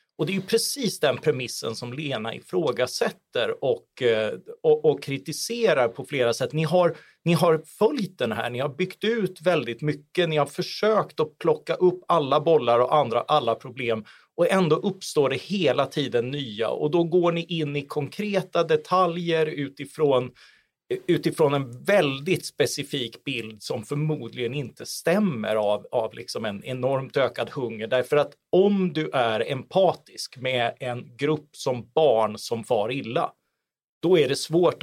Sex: male